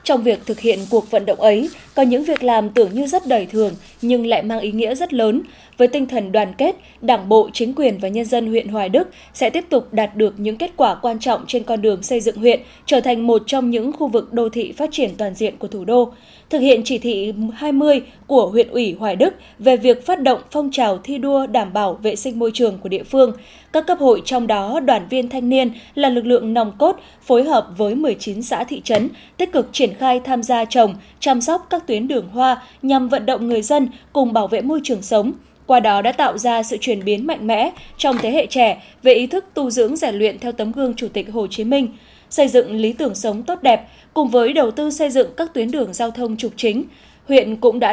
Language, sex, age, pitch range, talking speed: Vietnamese, female, 10-29, 225-275 Hz, 245 wpm